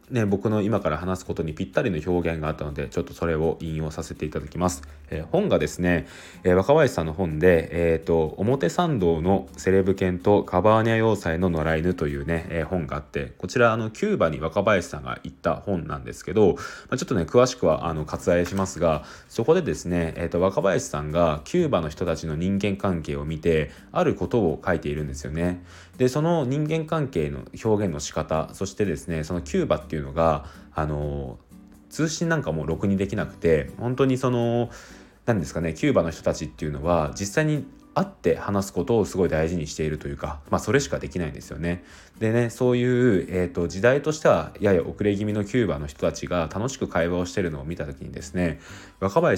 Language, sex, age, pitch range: Japanese, male, 20-39, 80-105 Hz